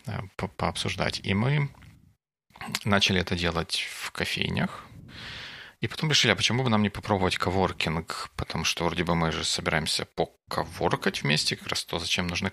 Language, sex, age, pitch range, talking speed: English, male, 40-59, 85-100 Hz, 155 wpm